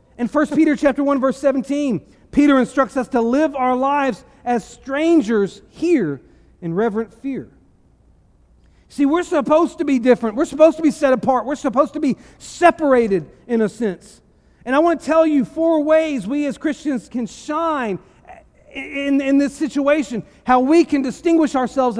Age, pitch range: 40-59, 220-300 Hz